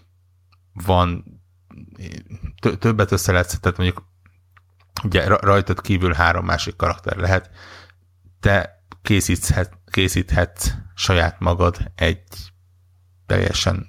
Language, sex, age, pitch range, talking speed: Hungarian, male, 60-79, 85-95 Hz, 85 wpm